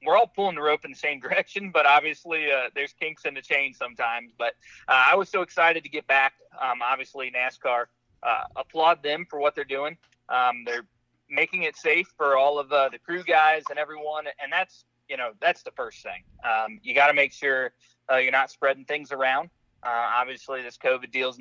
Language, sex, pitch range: English, male, 130-155 Hz